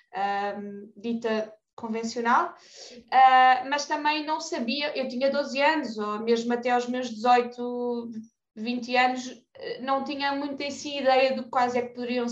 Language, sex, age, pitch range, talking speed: Portuguese, female, 20-39, 235-280 Hz, 155 wpm